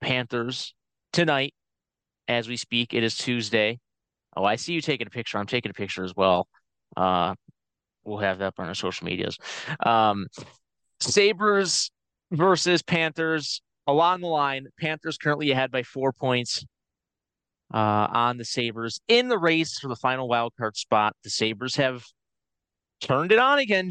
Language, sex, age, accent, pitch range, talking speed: English, male, 30-49, American, 115-165 Hz, 155 wpm